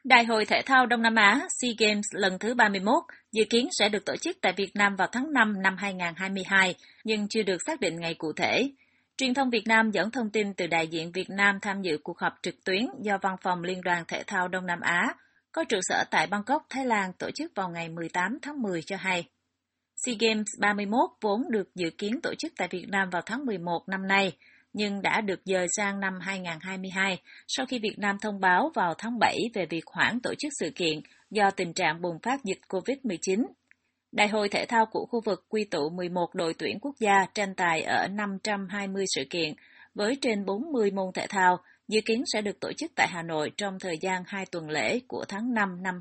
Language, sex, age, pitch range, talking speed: Vietnamese, female, 20-39, 180-225 Hz, 220 wpm